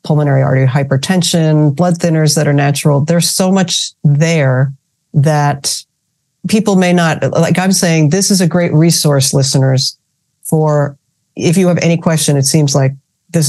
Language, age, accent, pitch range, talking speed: English, 50-69, American, 145-170 Hz, 155 wpm